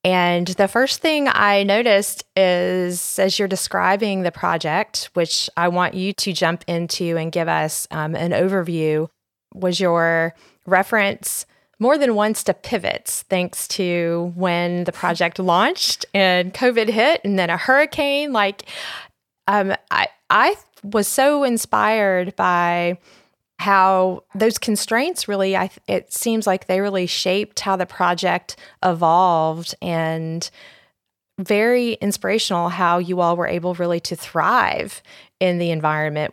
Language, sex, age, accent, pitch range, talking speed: English, female, 30-49, American, 170-200 Hz, 135 wpm